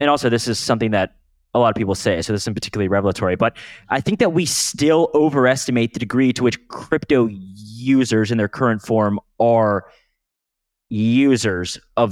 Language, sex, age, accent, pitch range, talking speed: English, male, 20-39, American, 110-145 Hz, 180 wpm